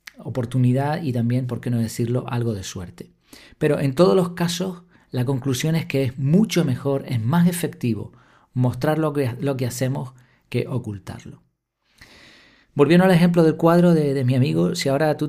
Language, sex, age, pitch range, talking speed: Spanish, male, 40-59, 115-140 Hz, 175 wpm